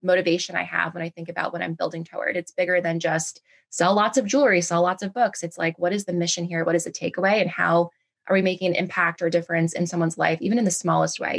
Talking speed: 270 wpm